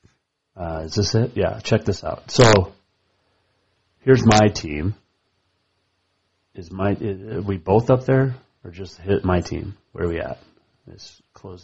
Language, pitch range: English, 95-125 Hz